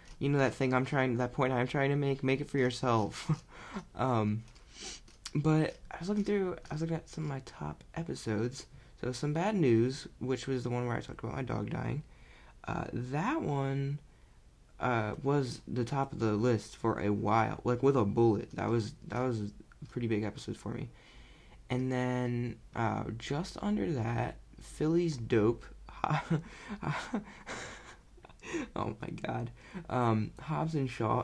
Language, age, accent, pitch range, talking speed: English, 20-39, American, 115-145 Hz, 175 wpm